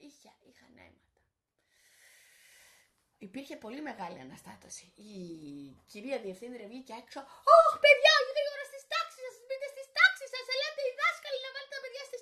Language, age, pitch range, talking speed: Greek, 20-39, 235-345 Hz, 150 wpm